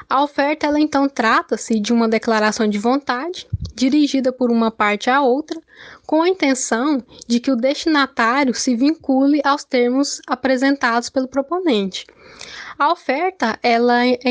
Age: 10-29